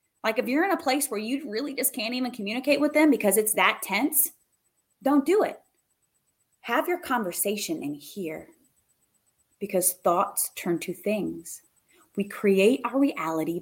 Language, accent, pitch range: English, American, 160-225 Hz